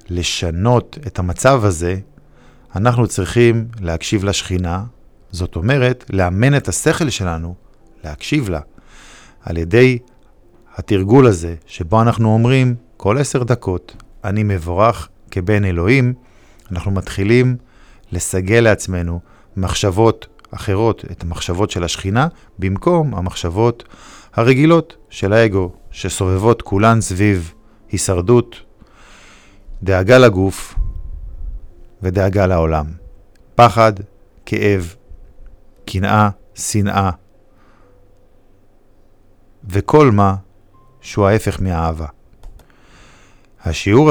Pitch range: 90-115 Hz